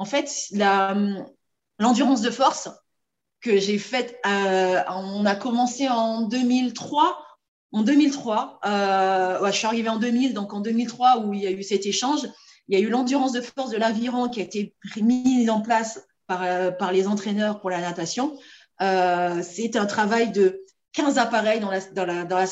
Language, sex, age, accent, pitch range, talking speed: French, female, 30-49, French, 195-255 Hz, 170 wpm